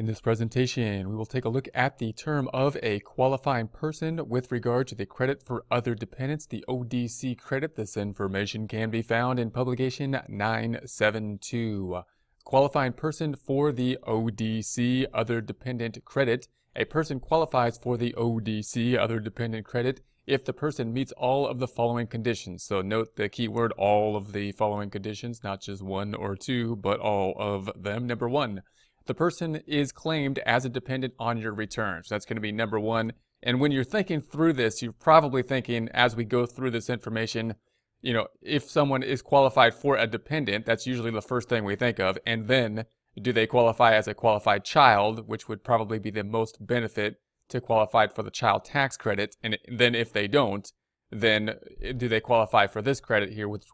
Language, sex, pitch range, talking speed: English, male, 110-130 Hz, 185 wpm